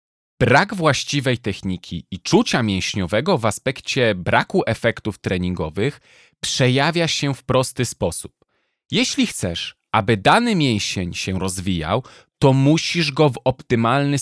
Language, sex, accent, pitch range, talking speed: Polish, male, native, 110-155 Hz, 120 wpm